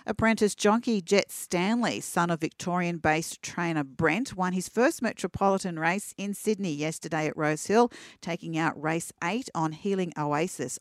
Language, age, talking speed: English, 40-59, 150 wpm